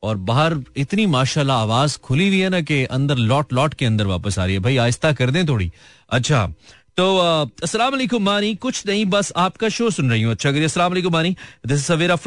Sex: male